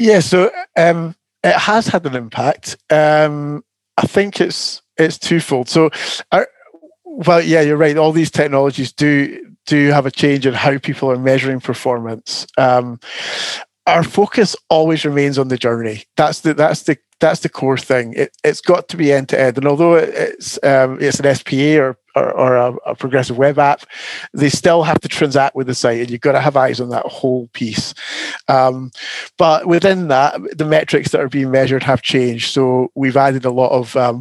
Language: English